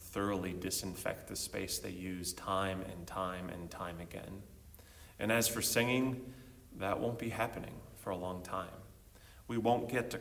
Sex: male